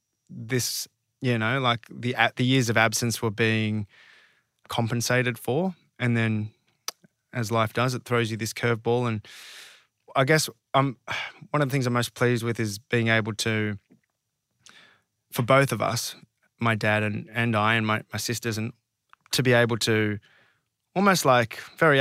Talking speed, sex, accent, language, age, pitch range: 165 wpm, male, Australian, English, 20-39, 110-130 Hz